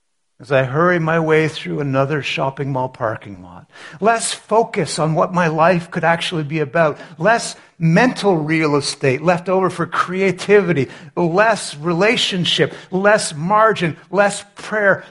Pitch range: 135-175 Hz